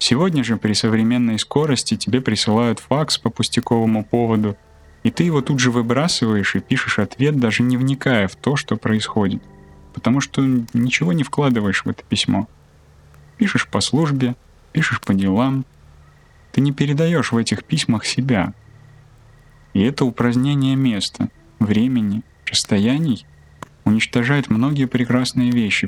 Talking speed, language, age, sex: 135 wpm, Russian, 20-39, male